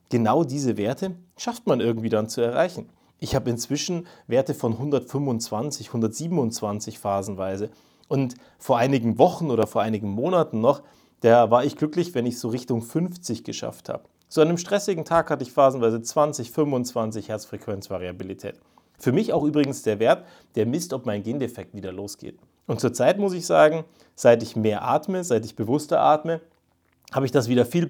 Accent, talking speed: German, 170 wpm